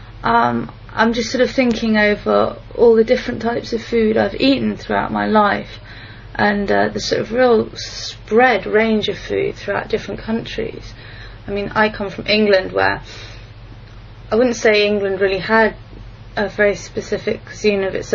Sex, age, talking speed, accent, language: female, 30-49, 165 wpm, British, English